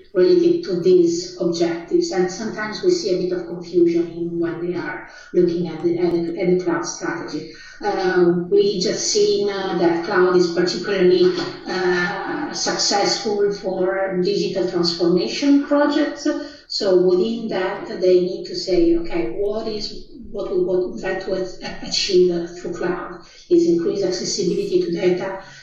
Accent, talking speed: Italian, 140 wpm